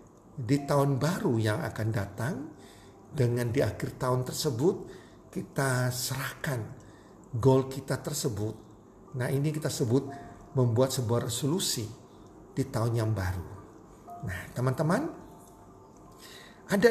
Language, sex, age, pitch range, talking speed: Indonesian, male, 50-69, 115-150 Hz, 105 wpm